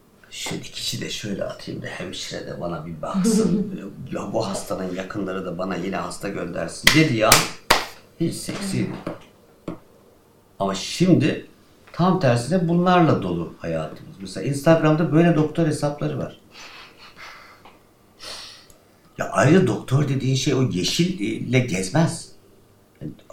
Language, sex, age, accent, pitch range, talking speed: Turkish, male, 60-79, native, 100-150 Hz, 120 wpm